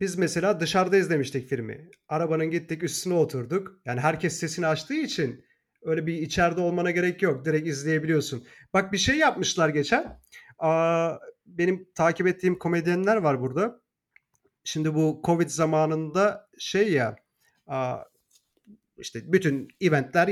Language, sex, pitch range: Turkish, male, 150-190 Hz